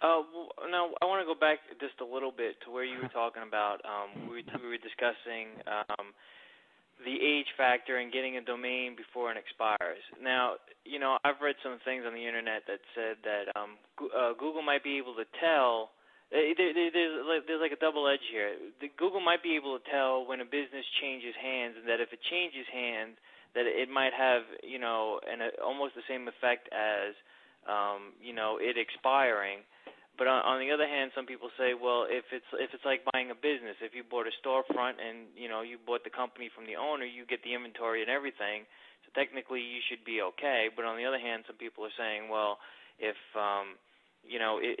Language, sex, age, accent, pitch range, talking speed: English, male, 20-39, American, 115-135 Hz, 215 wpm